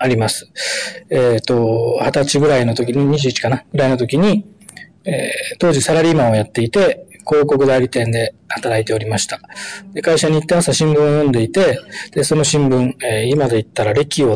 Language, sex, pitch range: Japanese, male, 125-180 Hz